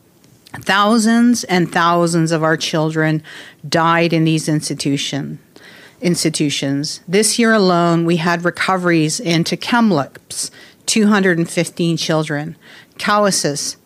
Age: 50-69